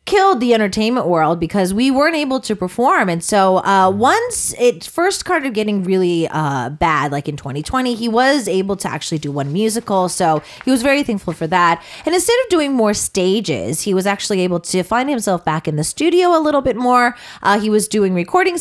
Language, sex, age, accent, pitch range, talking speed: English, female, 30-49, American, 165-275 Hz, 210 wpm